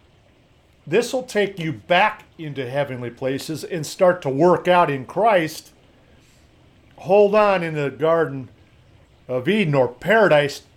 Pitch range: 120-170 Hz